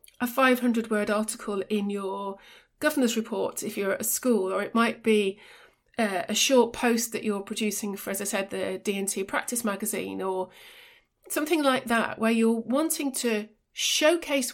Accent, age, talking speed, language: British, 30-49, 170 wpm, English